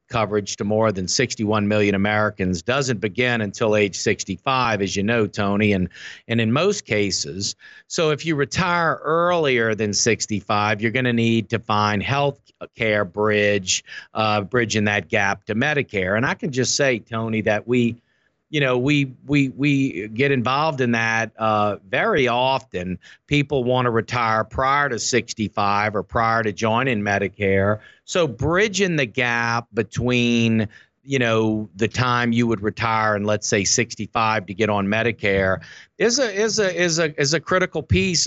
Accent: American